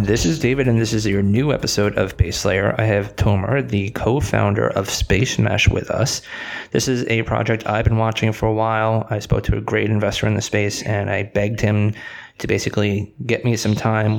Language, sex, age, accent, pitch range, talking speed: English, male, 20-39, American, 105-115 Hz, 215 wpm